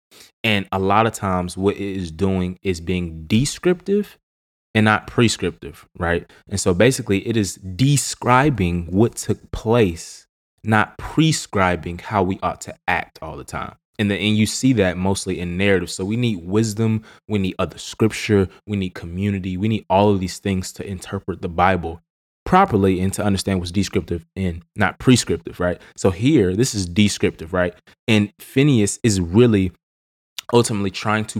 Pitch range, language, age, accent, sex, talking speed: 90-110 Hz, English, 20-39, American, male, 170 wpm